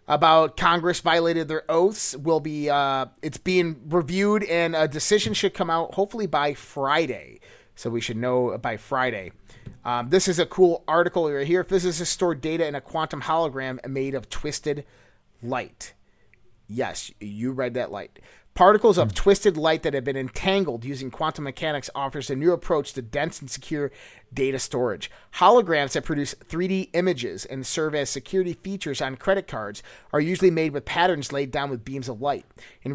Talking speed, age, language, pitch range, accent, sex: 175 wpm, 30-49, English, 130-175 Hz, American, male